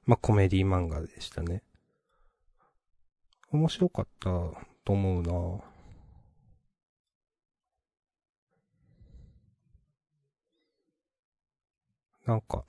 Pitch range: 95-135 Hz